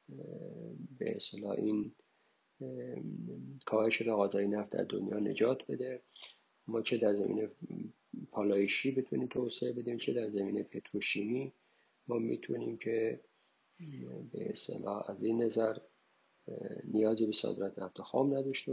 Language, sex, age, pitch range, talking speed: Persian, male, 50-69, 100-120 Hz, 110 wpm